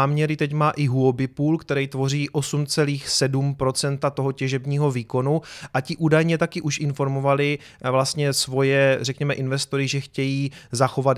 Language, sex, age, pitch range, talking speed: Czech, male, 30-49, 130-155 Hz, 135 wpm